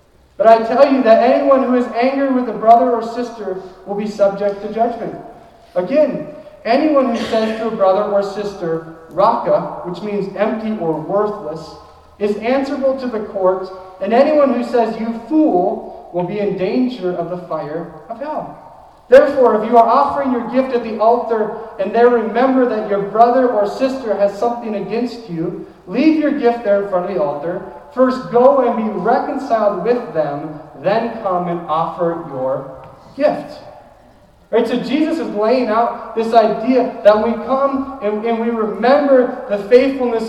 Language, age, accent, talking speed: English, 40-59, American, 170 wpm